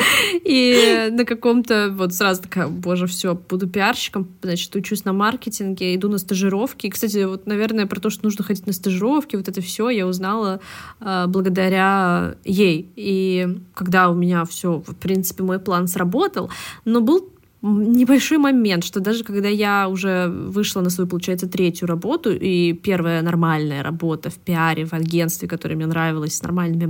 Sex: female